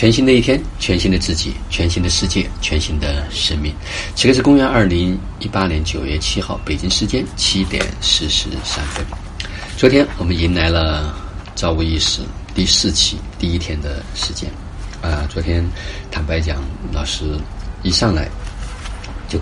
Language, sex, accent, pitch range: Chinese, male, native, 80-95 Hz